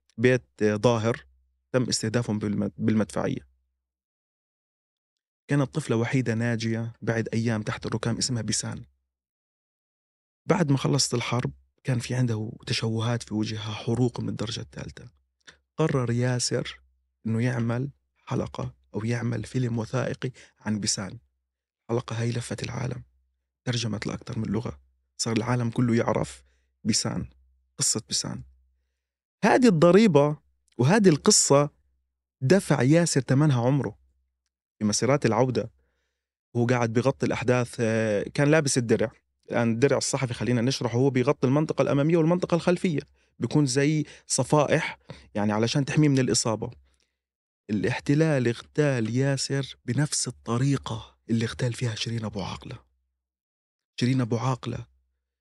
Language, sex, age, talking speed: Arabic, male, 30-49, 115 wpm